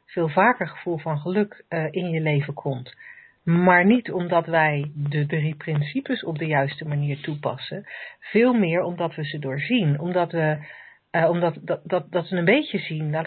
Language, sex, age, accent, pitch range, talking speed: Dutch, female, 50-69, Dutch, 155-190 Hz, 185 wpm